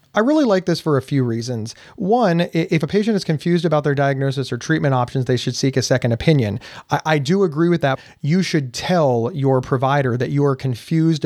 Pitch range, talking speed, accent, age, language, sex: 125-155 Hz, 220 wpm, American, 30-49, English, male